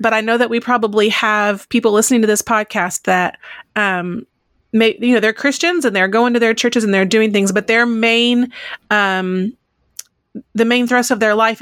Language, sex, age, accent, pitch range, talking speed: English, female, 30-49, American, 195-225 Hz, 200 wpm